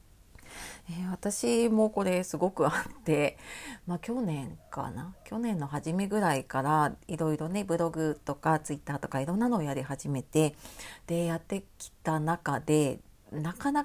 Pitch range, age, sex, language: 150-215 Hz, 40-59, female, Japanese